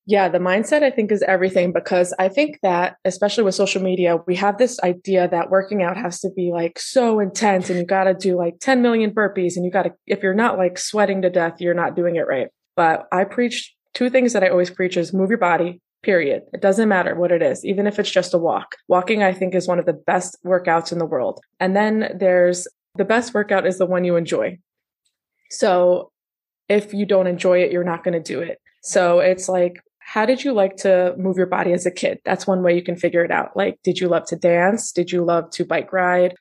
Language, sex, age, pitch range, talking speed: English, female, 20-39, 175-205 Hz, 245 wpm